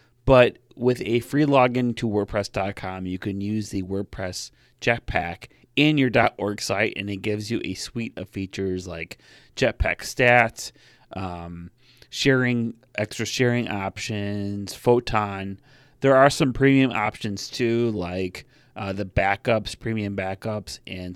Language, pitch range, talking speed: English, 100-135 Hz, 135 wpm